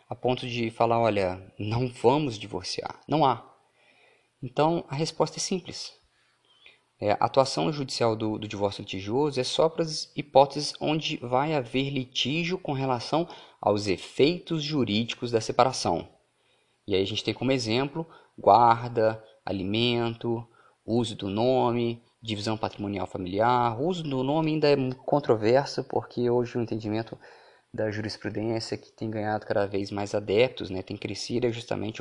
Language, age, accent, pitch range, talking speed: Portuguese, 20-39, Brazilian, 105-130 Hz, 150 wpm